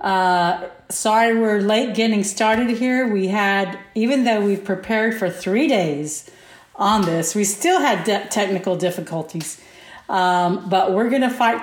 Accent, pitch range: American, 190-225 Hz